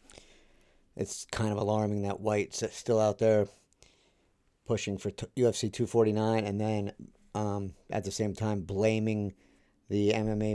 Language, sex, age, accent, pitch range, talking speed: English, male, 50-69, American, 100-110 Hz, 130 wpm